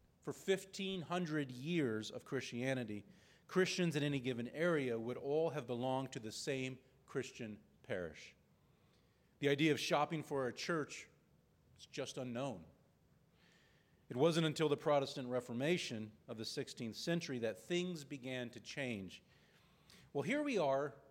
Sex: male